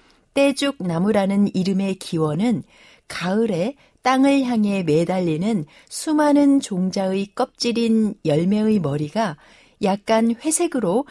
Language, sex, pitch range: Korean, female, 180-255 Hz